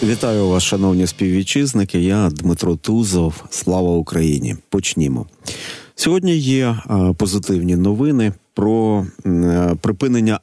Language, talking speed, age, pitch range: Ukrainian, 90 wpm, 40-59, 90-115 Hz